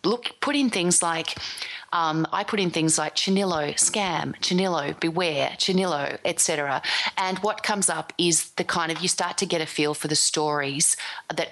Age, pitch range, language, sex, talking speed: 30-49, 150-185 Hz, English, female, 180 wpm